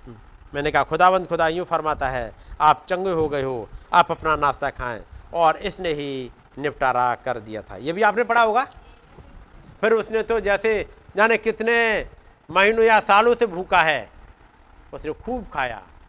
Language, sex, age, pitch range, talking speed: Hindi, male, 50-69, 130-215 Hz, 165 wpm